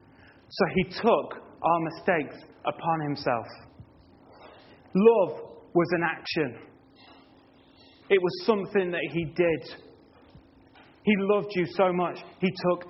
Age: 30-49